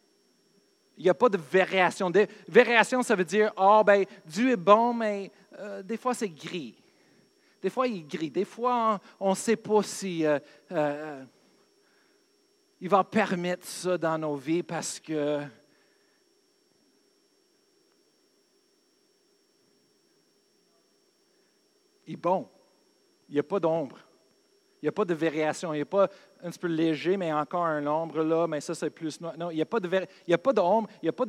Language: French